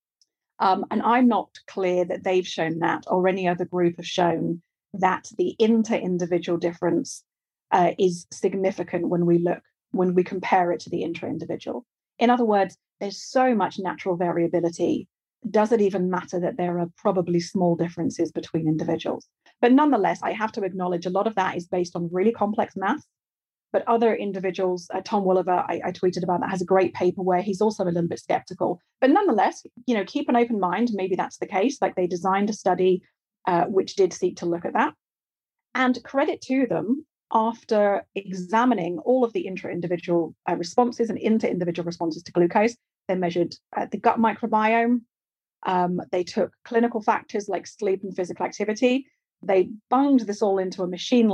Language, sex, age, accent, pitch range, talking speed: English, female, 30-49, British, 180-225 Hz, 180 wpm